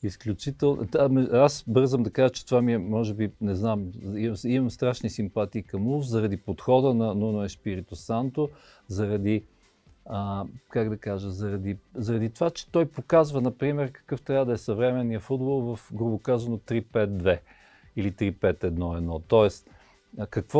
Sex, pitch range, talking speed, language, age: male, 100-130 Hz, 145 wpm, Bulgarian, 50-69